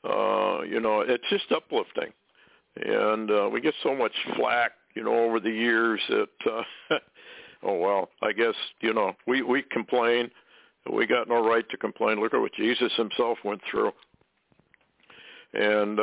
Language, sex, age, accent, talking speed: English, male, 60-79, American, 160 wpm